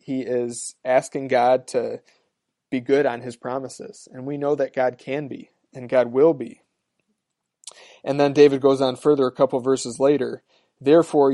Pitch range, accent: 125-140 Hz, American